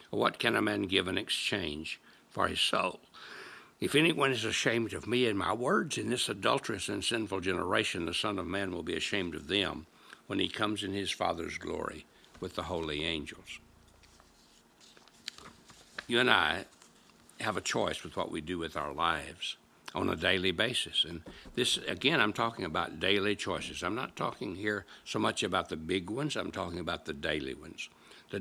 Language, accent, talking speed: English, American, 185 wpm